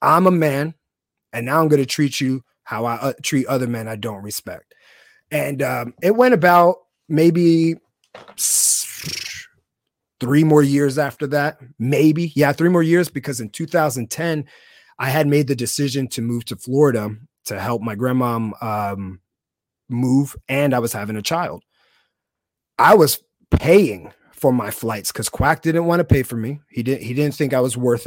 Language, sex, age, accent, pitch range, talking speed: English, male, 30-49, American, 120-160 Hz, 170 wpm